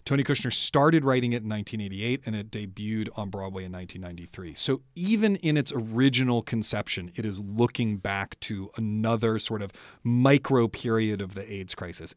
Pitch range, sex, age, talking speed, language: 105-125 Hz, male, 30-49, 170 wpm, English